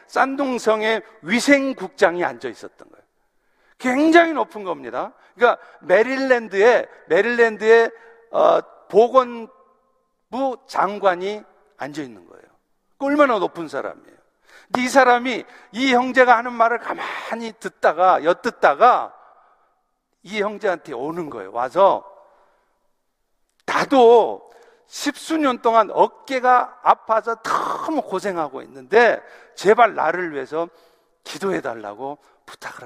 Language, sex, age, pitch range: Korean, male, 50-69, 195-255 Hz